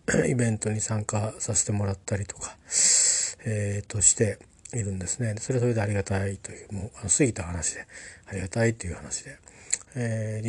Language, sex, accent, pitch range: Japanese, male, native, 100-115 Hz